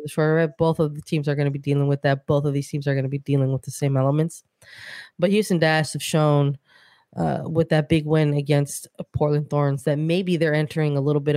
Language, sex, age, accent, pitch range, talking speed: English, female, 20-39, American, 140-160 Hz, 230 wpm